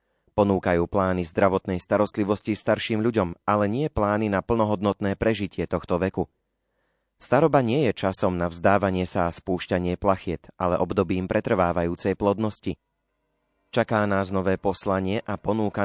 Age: 30-49